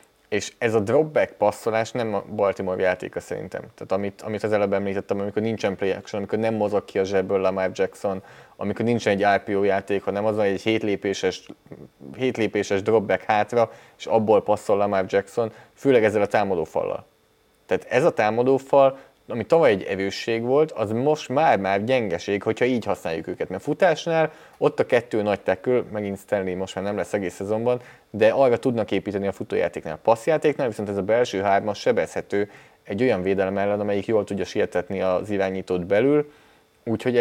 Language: English